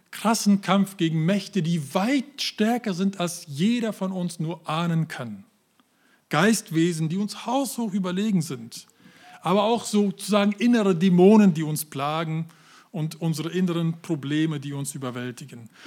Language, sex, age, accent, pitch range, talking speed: German, male, 40-59, German, 155-200 Hz, 135 wpm